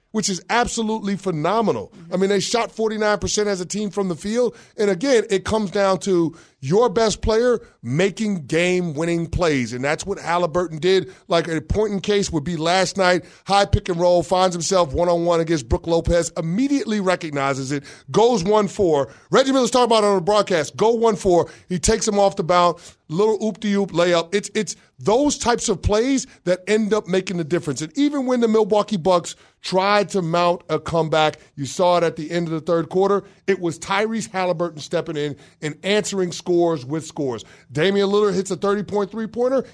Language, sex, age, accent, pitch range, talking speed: English, male, 30-49, American, 170-215 Hz, 190 wpm